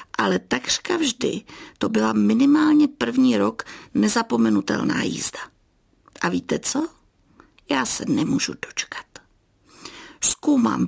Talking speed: 100 wpm